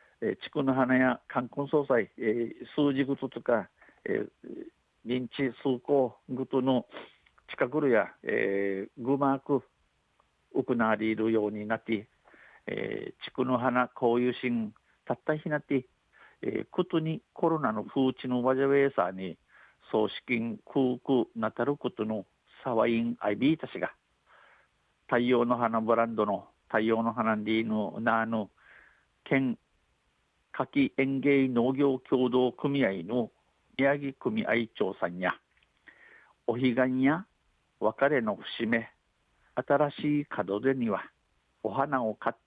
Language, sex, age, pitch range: Japanese, male, 50-69, 115-140 Hz